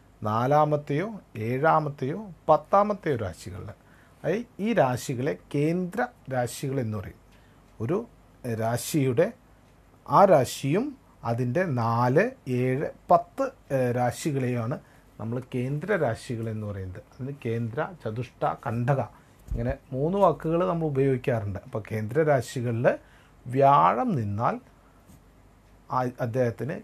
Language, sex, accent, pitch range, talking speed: Malayalam, male, native, 115-150 Hz, 80 wpm